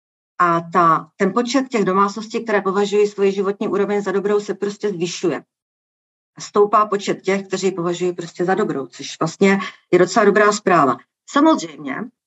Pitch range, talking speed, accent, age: 165-195 Hz, 150 wpm, native, 50-69